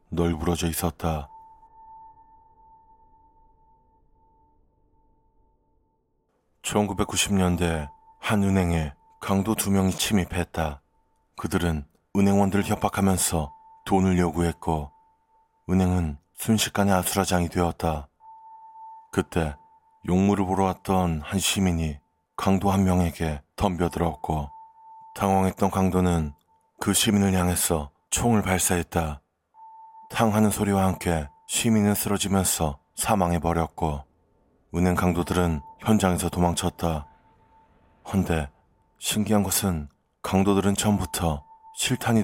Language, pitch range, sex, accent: Korean, 85-105 Hz, male, native